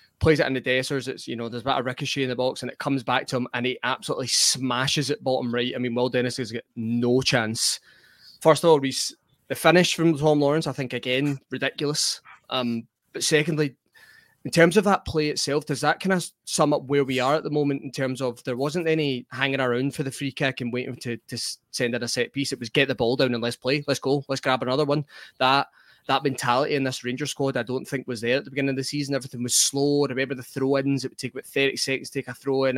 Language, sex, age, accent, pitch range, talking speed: English, male, 20-39, British, 125-145 Hz, 260 wpm